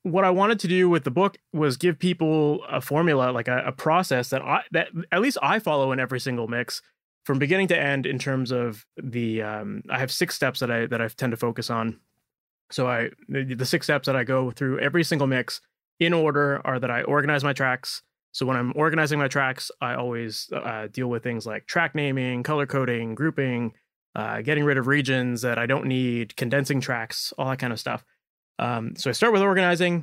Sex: male